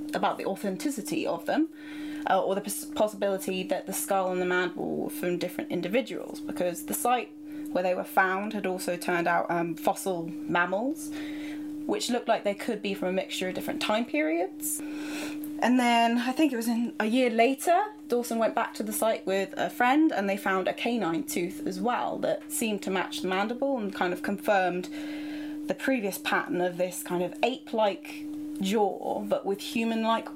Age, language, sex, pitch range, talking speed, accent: 10-29, English, female, 195-300 Hz, 190 wpm, British